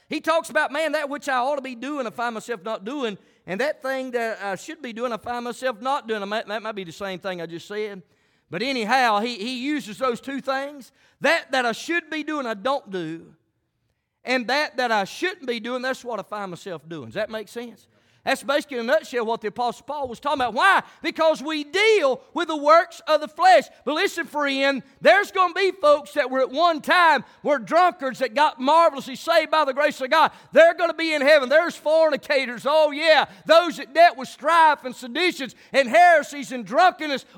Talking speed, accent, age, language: 220 wpm, American, 40-59, English